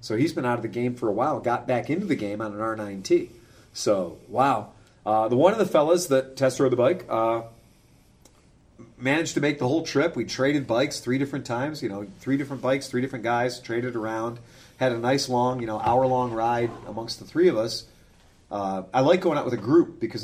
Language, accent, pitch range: English, American, 115-150 Hz